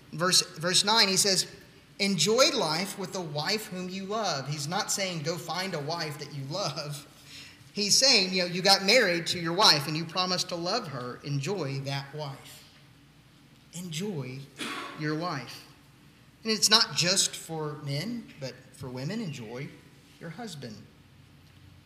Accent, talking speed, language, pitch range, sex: American, 155 wpm, English, 145-205 Hz, male